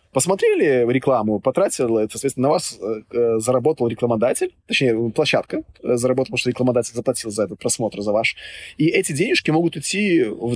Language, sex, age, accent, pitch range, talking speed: Russian, male, 20-39, native, 110-135 Hz, 155 wpm